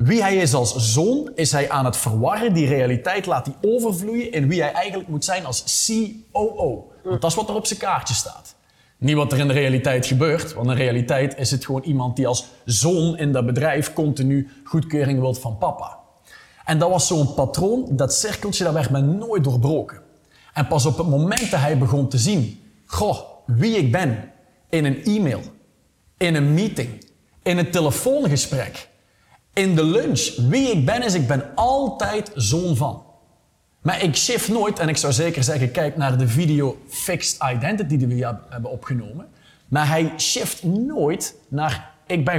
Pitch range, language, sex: 130-170 Hz, Dutch, male